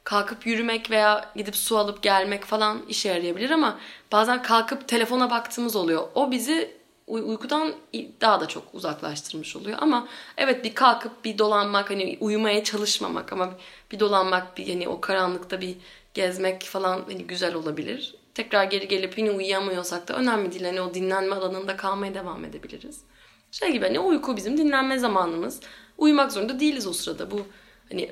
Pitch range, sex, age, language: 190-245 Hz, female, 10-29, Turkish